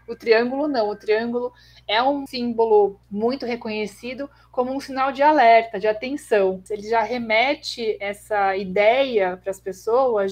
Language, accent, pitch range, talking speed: Portuguese, Brazilian, 210-255 Hz, 145 wpm